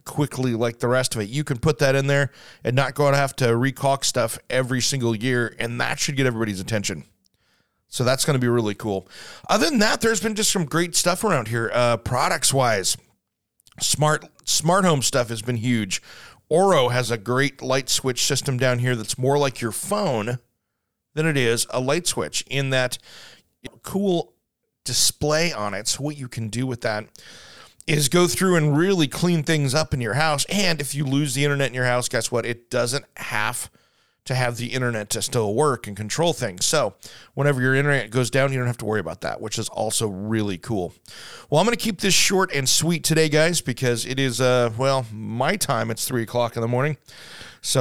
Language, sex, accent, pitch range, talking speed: English, male, American, 115-145 Hz, 210 wpm